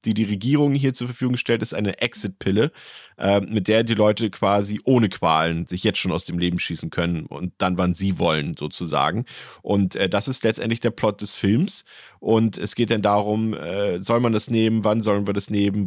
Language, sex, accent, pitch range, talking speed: German, male, German, 95-115 Hz, 210 wpm